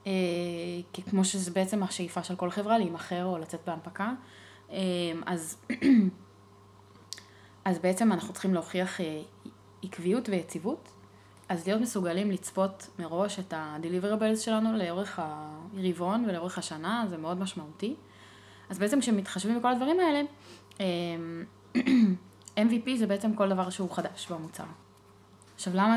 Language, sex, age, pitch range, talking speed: Hebrew, female, 20-39, 165-210 Hz, 120 wpm